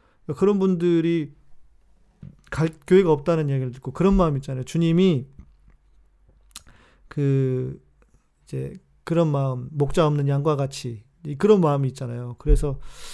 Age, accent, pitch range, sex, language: 40-59, native, 130-160 Hz, male, Korean